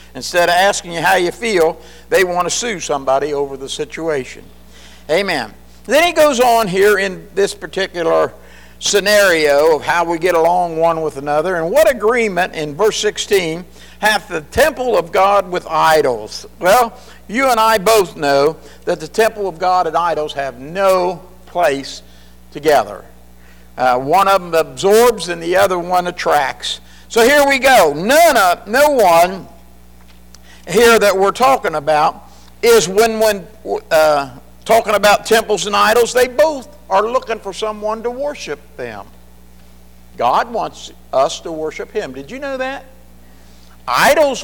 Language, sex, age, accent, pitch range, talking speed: English, male, 60-79, American, 150-225 Hz, 155 wpm